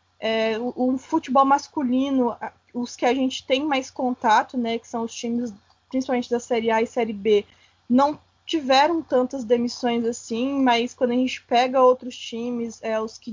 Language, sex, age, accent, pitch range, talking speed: Portuguese, female, 20-39, Brazilian, 240-280 Hz, 175 wpm